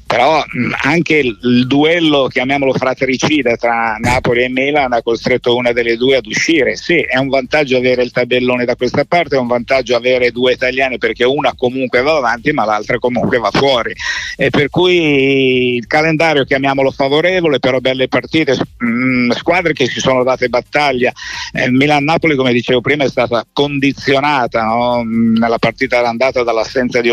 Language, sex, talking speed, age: Italian, male, 175 wpm, 50-69